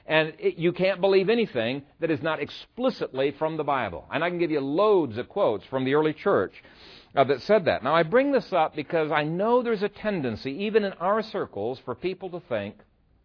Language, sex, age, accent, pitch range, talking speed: English, male, 60-79, American, 125-195 Hz, 215 wpm